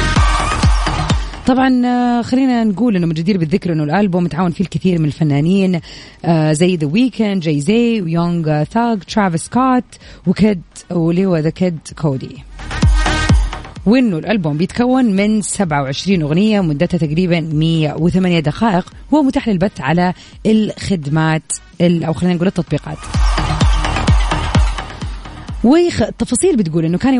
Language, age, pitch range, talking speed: Arabic, 20-39, 170-225 Hz, 115 wpm